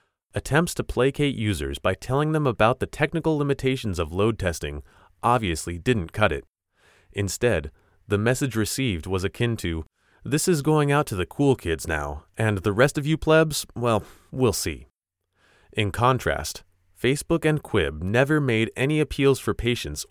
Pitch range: 90-130 Hz